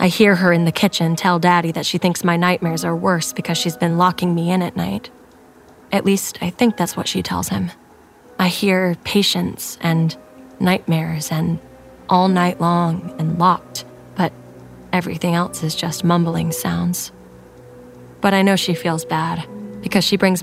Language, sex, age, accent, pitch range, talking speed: English, female, 20-39, American, 165-185 Hz, 175 wpm